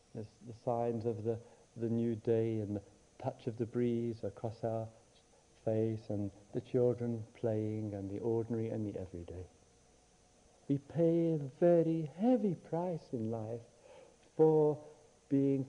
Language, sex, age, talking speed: English, male, 60-79, 140 wpm